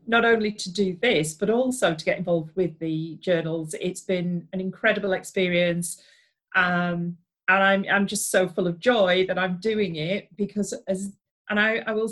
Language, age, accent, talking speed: English, 40-59, British, 185 wpm